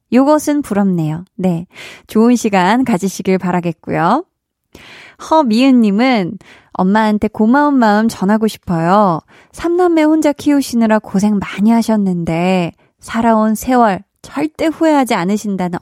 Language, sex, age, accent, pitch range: Korean, female, 20-39, native, 180-230 Hz